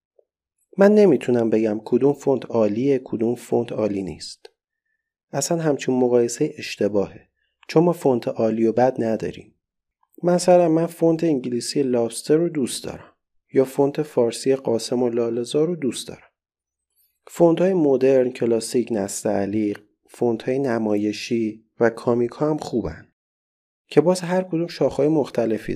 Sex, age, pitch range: male, 40-59, 110-155 Hz